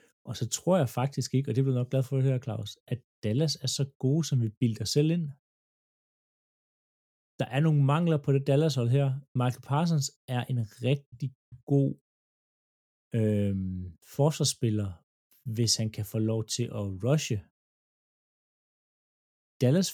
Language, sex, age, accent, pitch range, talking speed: Danish, male, 30-49, native, 110-140 Hz, 150 wpm